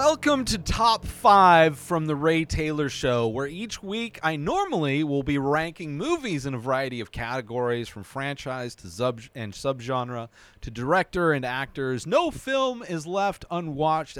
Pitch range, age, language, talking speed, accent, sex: 130-195 Hz, 30-49, English, 160 wpm, American, male